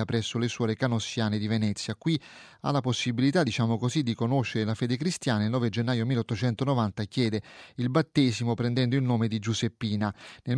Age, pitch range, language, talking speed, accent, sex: 30-49, 110-135 Hz, Italian, 170 wpm, native, male